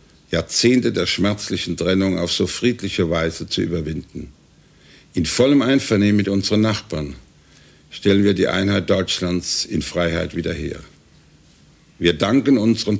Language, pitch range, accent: Dutch, 85-110 Hz, German